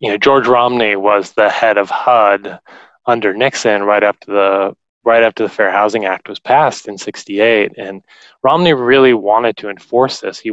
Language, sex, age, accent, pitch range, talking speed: English, male, 20-39, American, 95-115 Hz, 180 wpm